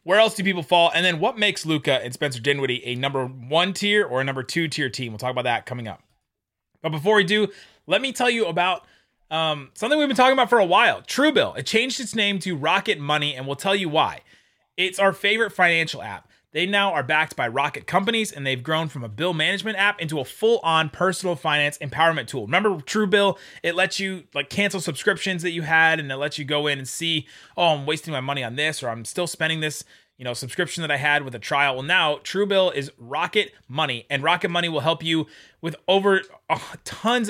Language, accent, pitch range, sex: English, American, 145-190 Hz, male